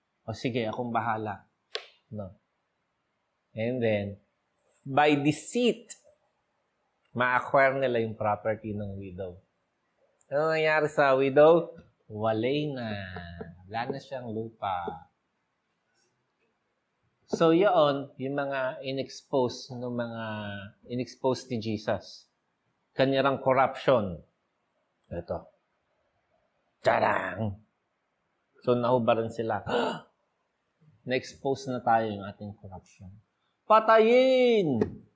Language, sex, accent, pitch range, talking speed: Filipino, male, native, 110-145 Hz, 85 wpm